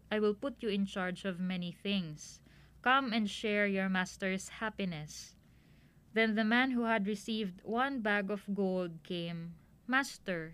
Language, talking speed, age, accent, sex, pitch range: Filipino, 155 wpm, 20-39, native, female, 190-230 Hz